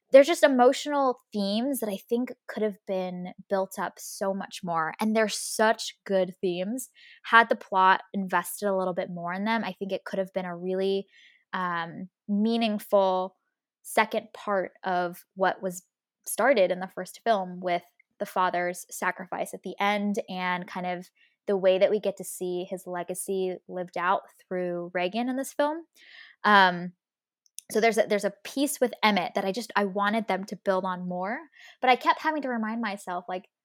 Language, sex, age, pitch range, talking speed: English, female, 10-29, 185-225 Hz, 180 wpm